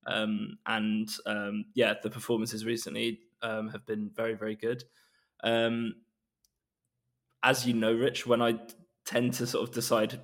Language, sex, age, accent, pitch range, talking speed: English, male, 20-39, British, 110-120 Hz, 145 wpm